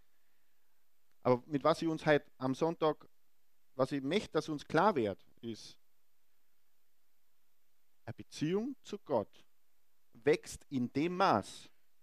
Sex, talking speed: male, 120 wpm